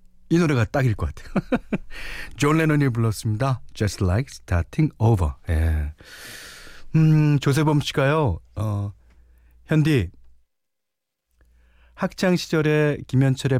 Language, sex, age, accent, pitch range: Korean, male, 40-59, native, 90-130 Hz